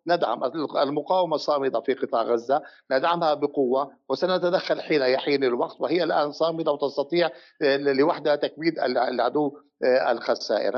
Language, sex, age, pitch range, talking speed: Arabic, male, 60-79, 140-180 Hz, 105 wpm